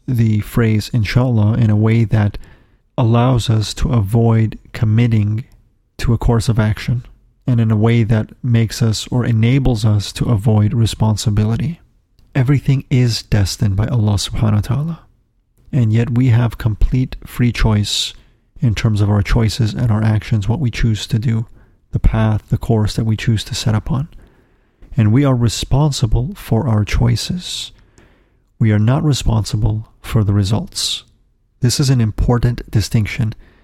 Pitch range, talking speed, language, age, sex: 105-120 Hz, 155 wpm, English, 40-59, male